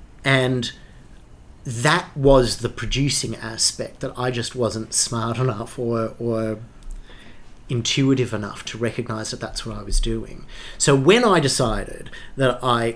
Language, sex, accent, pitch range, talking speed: English, male, Australian, 115-145 Hz, 140 wpm